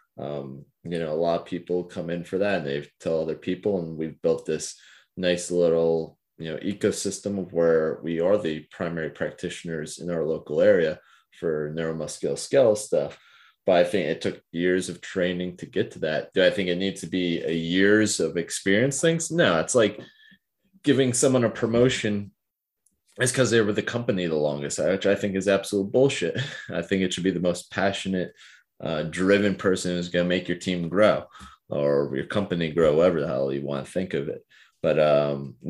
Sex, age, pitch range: male, 30-49, 80-105 Hz